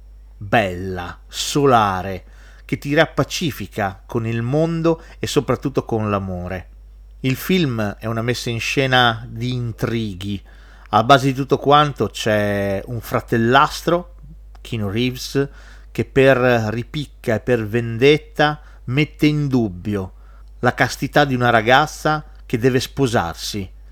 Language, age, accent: Italian, 40-59, native